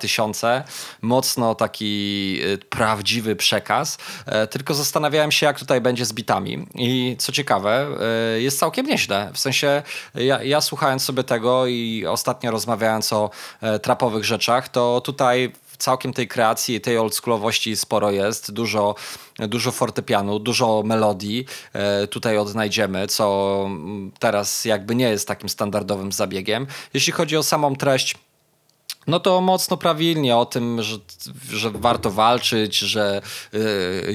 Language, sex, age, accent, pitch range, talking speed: Polish, male, 20-39, native, 105-130 Hz, 130 wpm